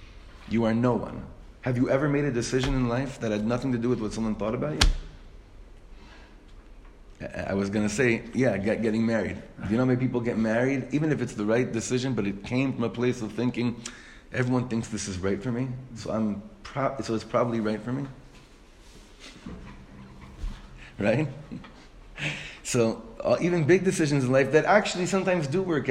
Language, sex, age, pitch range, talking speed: English, male, 30-49, 110-155 Hz, 190 wpm